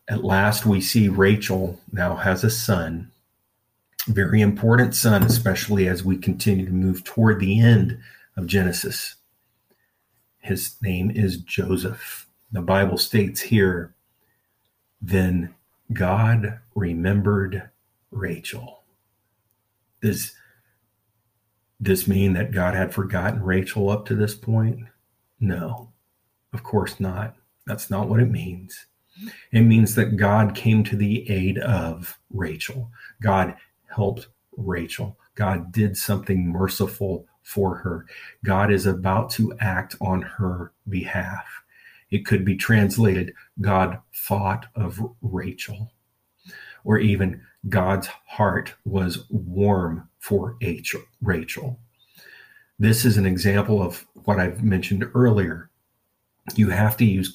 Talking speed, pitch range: 115 wpm, 95-110 Hz